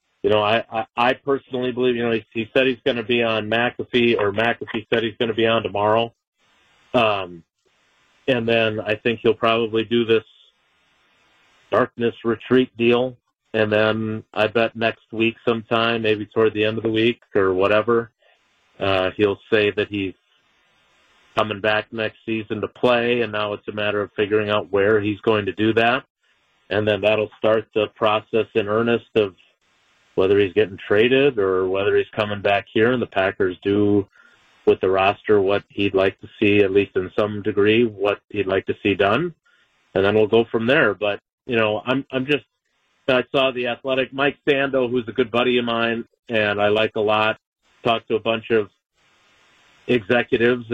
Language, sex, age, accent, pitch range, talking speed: English, male, 40-59, American, 105-125 Hz, 185 wpm